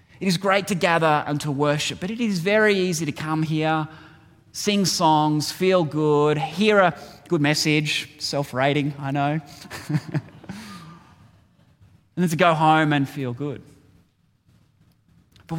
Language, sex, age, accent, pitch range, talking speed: English, male, 20-39, Australian, 145-195 Hz, 140 wpm